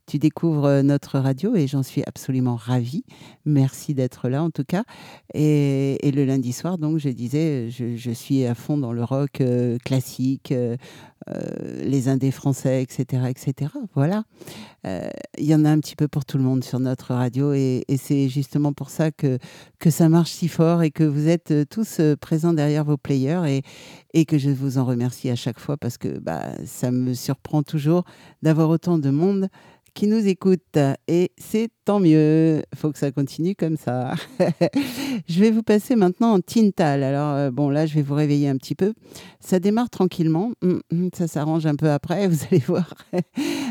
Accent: French